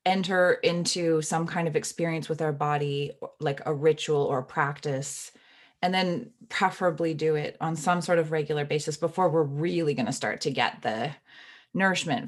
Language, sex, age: English, female, 20-39